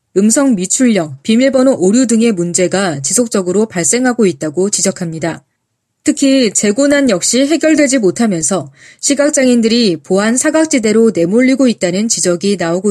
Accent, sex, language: native, female, Korean